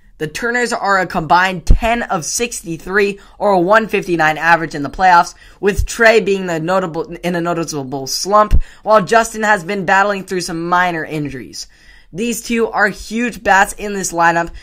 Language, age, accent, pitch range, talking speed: English, 10-29, American, 155-190 Hz, 170 wpm